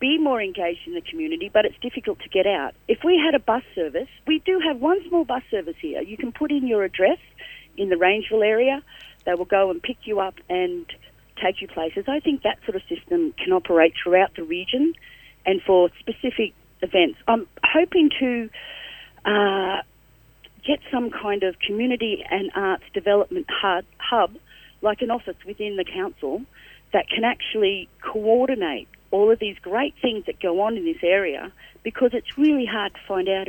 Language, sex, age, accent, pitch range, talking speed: English, female, 40-59, Australian, 190-300 Hz, 185 wpm